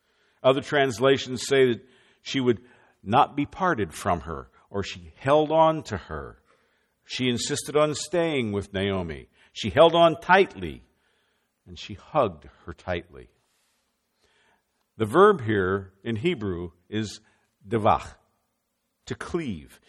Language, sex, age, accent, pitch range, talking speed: English, male, 50-69, American, 100-140 Hz, 125 wpm